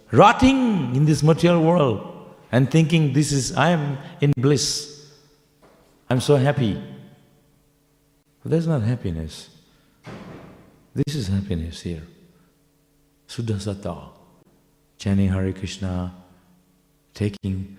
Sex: male